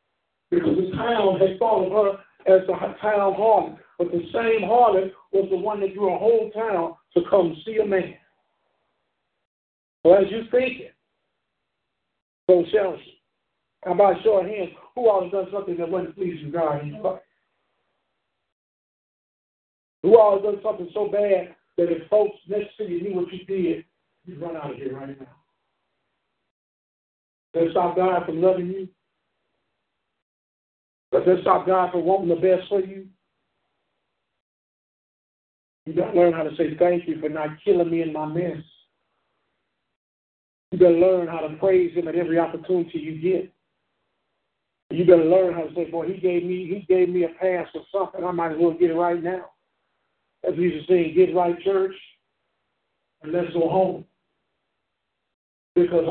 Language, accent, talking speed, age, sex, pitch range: English, American, 165 wpm, 60-79, male, 170-195 Hz